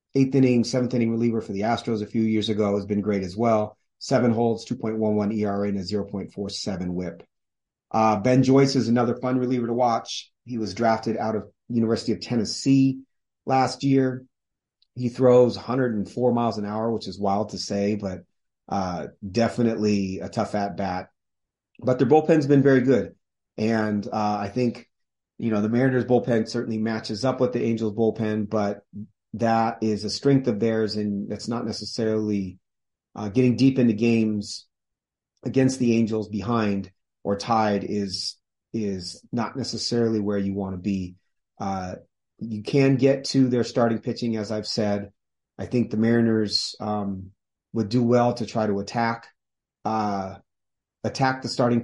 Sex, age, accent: male, 30-49, American